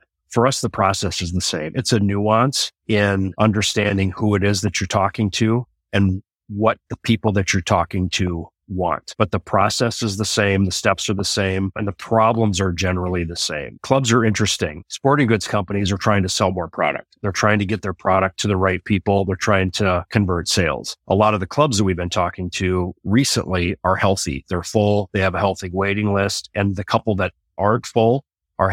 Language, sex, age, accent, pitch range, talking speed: English, male, 40-59, American, 95-110 Hz, 210 wpm